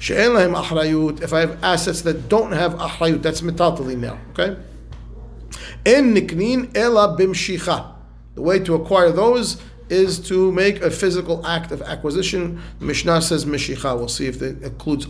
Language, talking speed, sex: English, 130 wpm, male